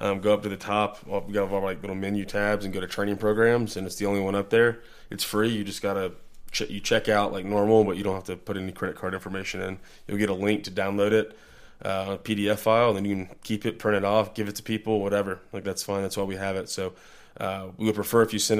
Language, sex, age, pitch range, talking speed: English, male, 20-39, 100-110 Hz, 285 wpm